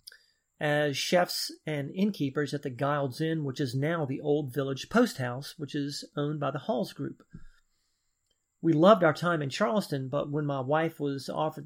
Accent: American